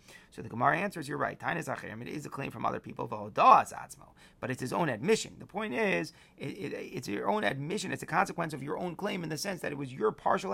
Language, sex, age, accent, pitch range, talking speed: English, male, 30-49, American, 130-170 Hz, 250 wpm